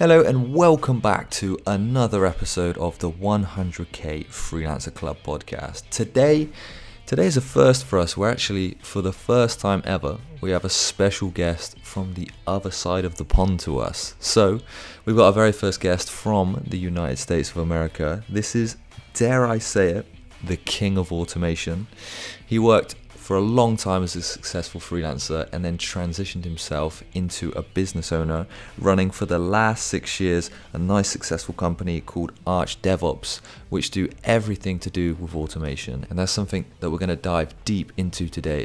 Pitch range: 85-100 Hz